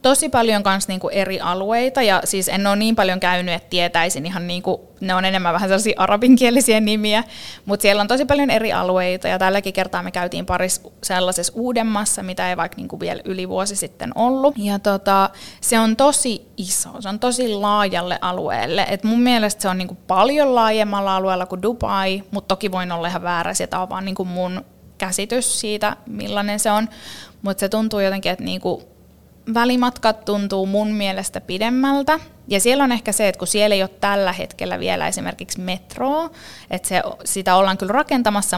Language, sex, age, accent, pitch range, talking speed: Finnish, female, 20-39, native, 185-225 Hz, 185 wpm